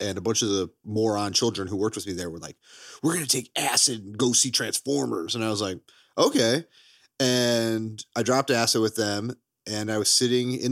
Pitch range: 100-130 Hz